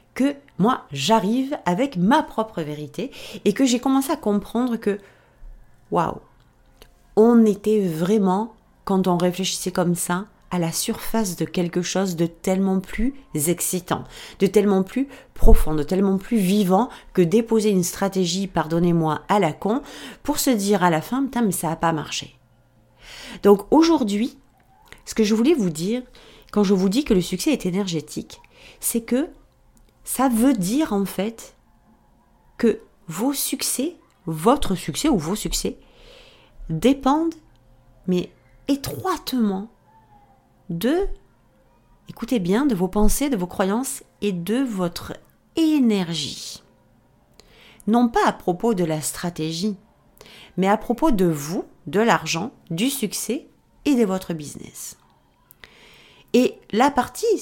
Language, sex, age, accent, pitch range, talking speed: French, female, 40-59, French, 175-245 Hz, 140 wpm